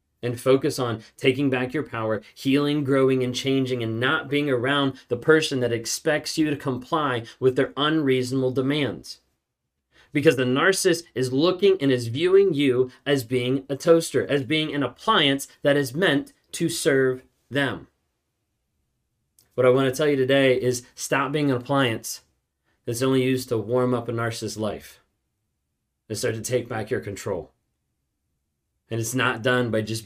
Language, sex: English, male